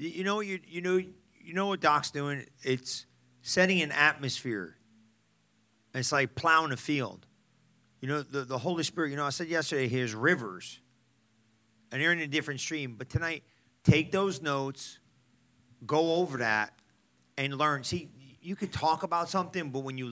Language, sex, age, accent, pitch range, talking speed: English, male, 40-59, American, 125-165 Hz, 175 wpm